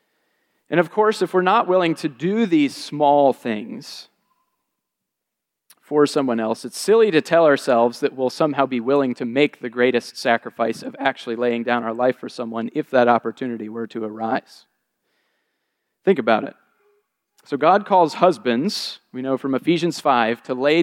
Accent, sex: American, male